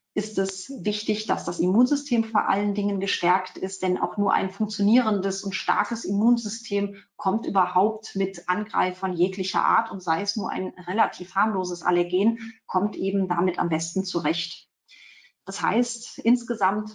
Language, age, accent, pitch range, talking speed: German, 30-49, German, 180-215 Hz, 150 wpm